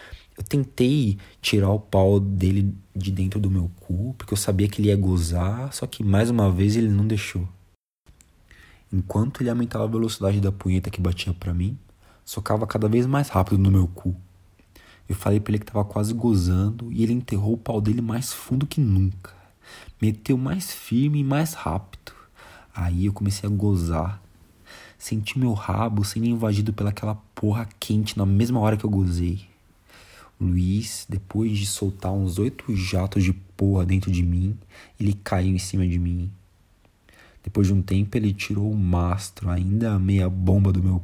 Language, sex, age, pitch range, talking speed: Portuguese, male, 20-39, 90-110 Hz, 175 wpm